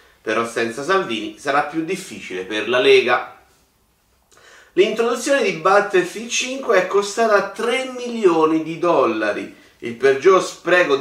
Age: 30-49